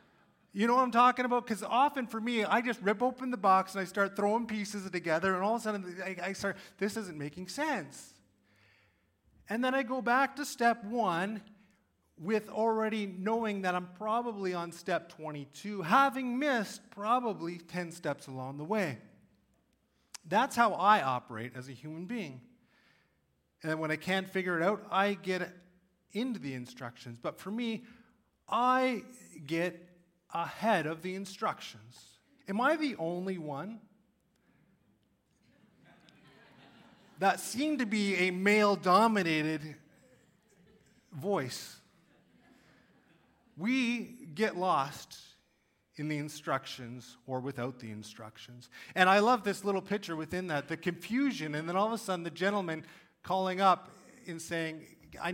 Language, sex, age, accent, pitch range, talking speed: English, male, 30-49, American, 160-220 Hz, 145 wpm